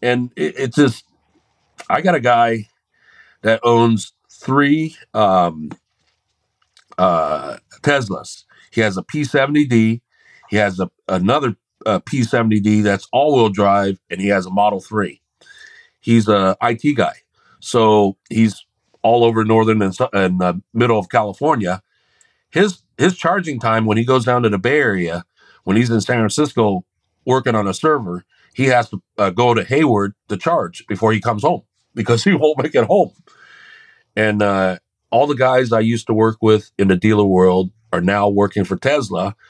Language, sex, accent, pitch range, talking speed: English, male, American, 100-125 Hz, 160 wpm